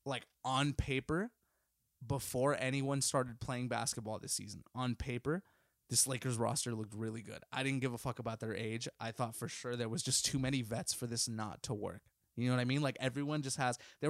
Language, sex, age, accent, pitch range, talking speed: English, male, 20-39, American, 120-140 Hz, 220 wpm